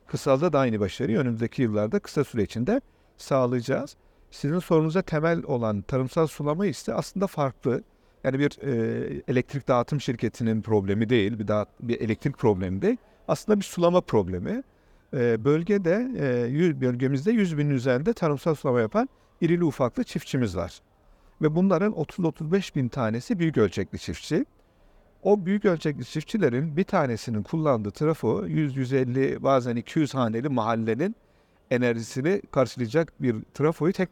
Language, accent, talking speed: Turkish, native, 130 wpm